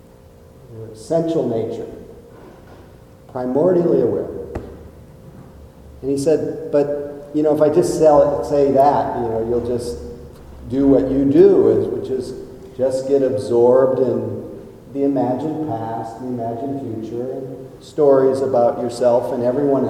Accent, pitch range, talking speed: American, 125-145 Hz, 120 wpm